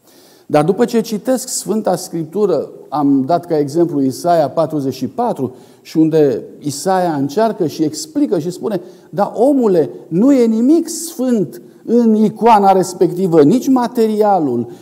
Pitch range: 145-230 Hz